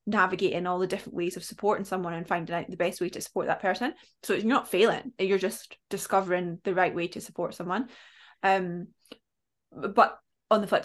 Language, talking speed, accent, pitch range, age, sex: English, 200 wpm, British, 175-205 Hz, 20-39, female